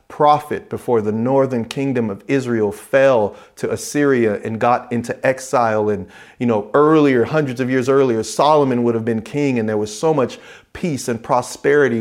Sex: male